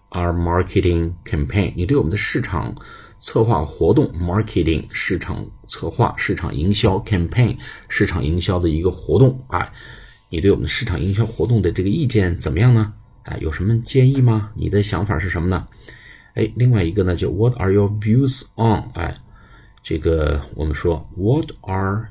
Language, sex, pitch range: Chinese, male, 90-110 Hz